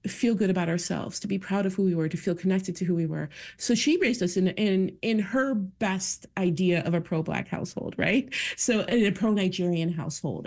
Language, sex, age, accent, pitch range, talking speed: English, female, 30-49, American, 170-210 Hz, 220 wpm